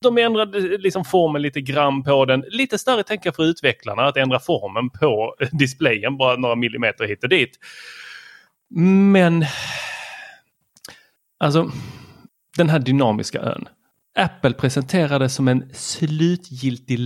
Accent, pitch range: native, 130-190 Hz